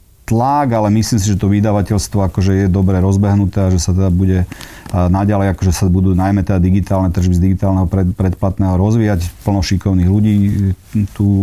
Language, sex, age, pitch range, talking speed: Slovak, male, 40-59, 95-110 Hz, 165 wpm